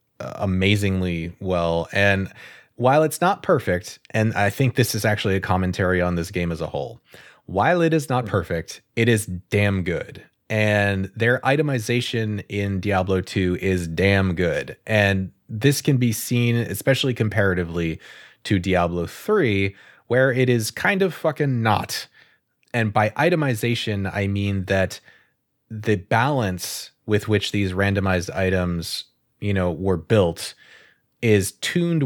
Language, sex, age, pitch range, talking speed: English, male, 30-49, 90-115 Hz, 140 wpm